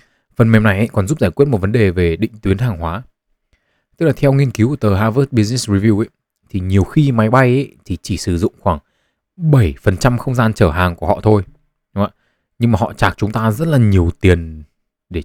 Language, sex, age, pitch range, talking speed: Vietnamese, male, 20-39, 95-120 Hz, 230 wpm